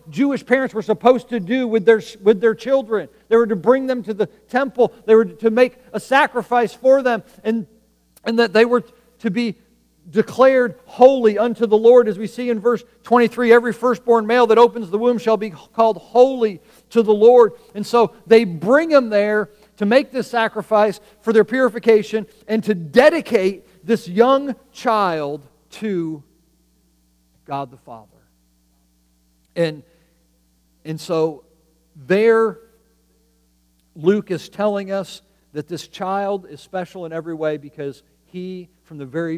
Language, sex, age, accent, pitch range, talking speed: English, male, 40-59, American, 165-230 Hz, 155 wpm